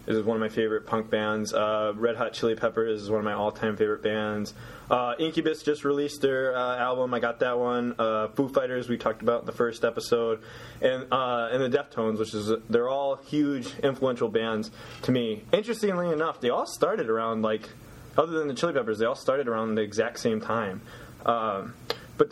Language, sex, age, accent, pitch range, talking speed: English, male, 20-39, American, 110-130 Hz, 205 wpm